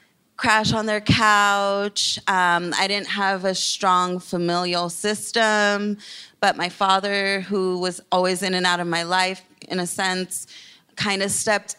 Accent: American